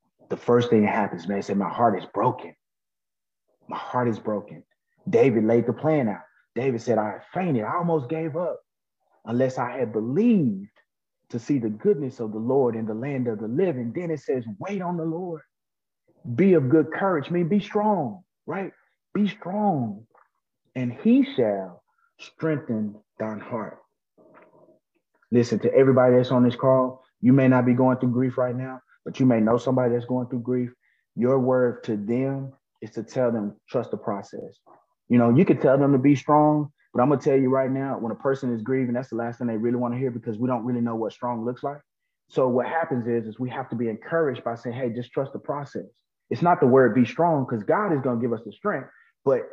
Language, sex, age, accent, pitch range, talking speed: English, male, 30-49, American, 120-150 Hz, 210 wpm